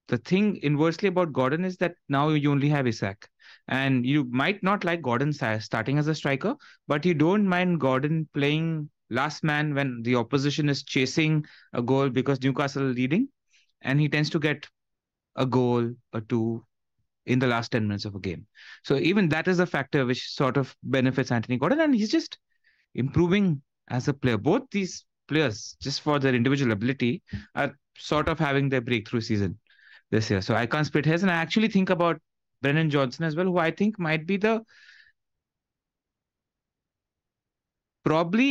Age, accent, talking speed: 30-49, Indian, 180 wpm